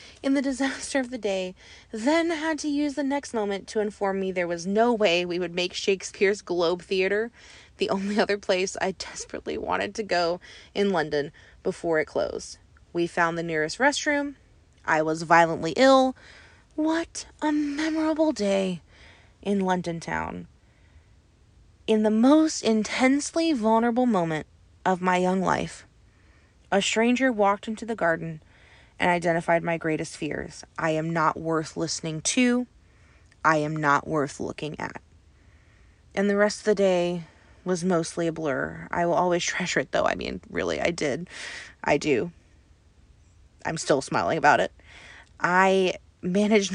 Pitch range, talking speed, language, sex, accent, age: 155-215 Hz, 155 wpm, English, female, American, 20-39